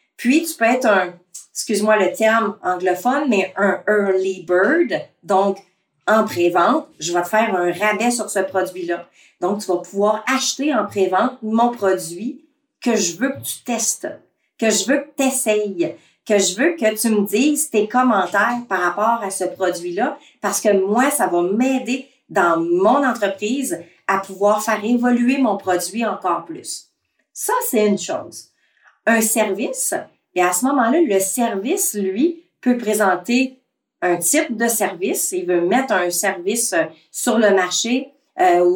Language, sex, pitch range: French, female, 190-265 Hz